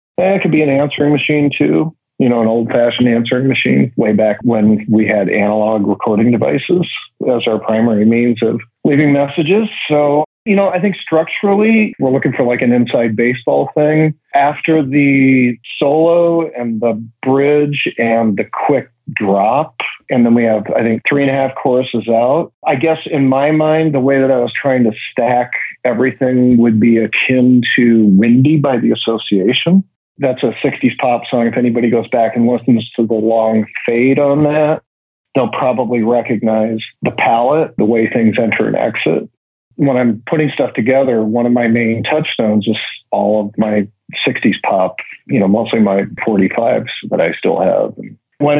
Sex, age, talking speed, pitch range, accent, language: male, 40-59, 175 wpm, 115-145 Hz, American, English